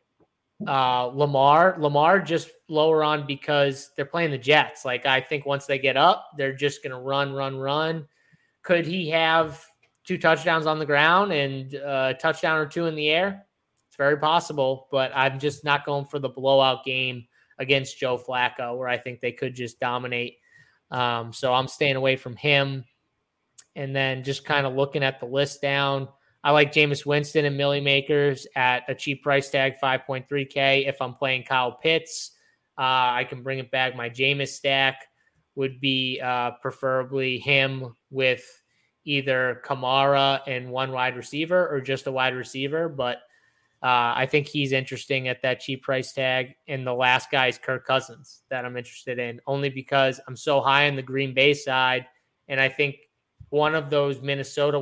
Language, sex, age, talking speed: English, male, 20-39, 175 wpm